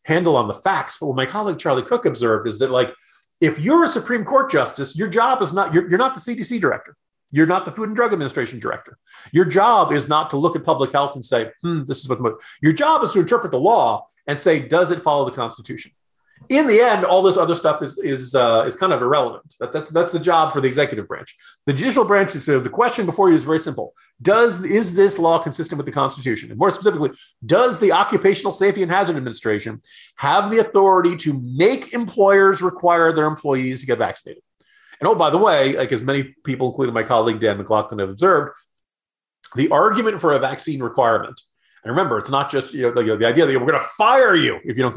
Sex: male